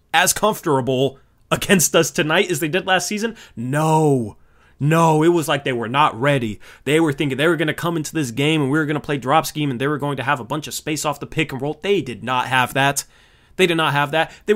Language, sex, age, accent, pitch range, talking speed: English, male, 20-39, American, 130-175 Hz, 265 wpm